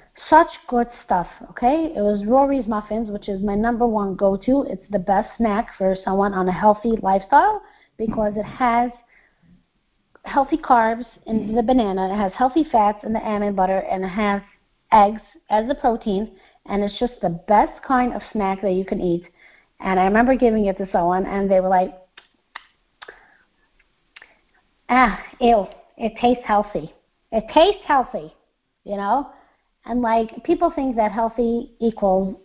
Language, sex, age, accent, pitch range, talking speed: English, female, 30-49, American, 195-255 Hz, 160 wpm